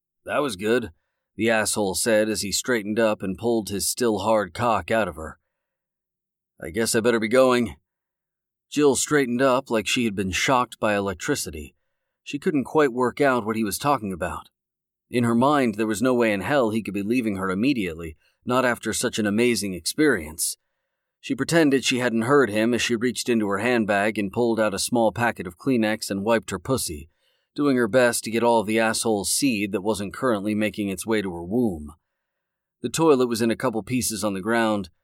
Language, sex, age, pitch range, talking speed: English, male, 40-59, 105-120 Hz, 205 wpm